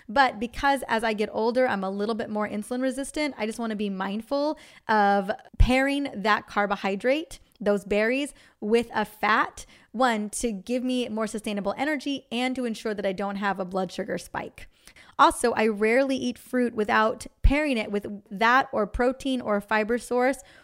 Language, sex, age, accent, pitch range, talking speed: English, female, 20-39, American, 210-255 Hz, 180 wpm